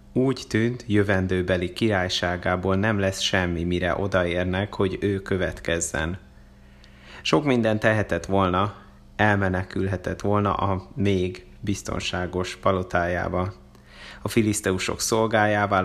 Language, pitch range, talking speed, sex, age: Hungarian, 90-110 Hz, 95 wpm, male, 30-49